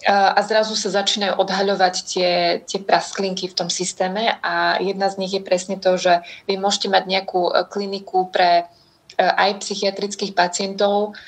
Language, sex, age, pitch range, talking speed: Slovak, female, 20-39, 185-200 Hz, 150 wpm